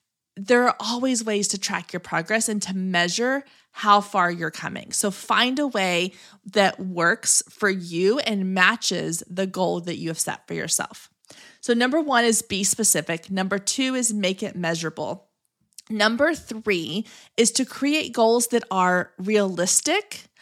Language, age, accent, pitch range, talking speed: English, 20-39, American, 185-240 Hz, 160 wpm